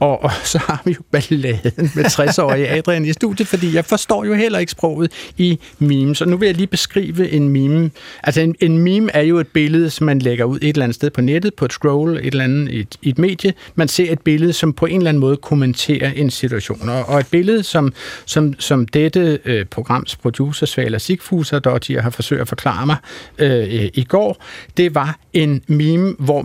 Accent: native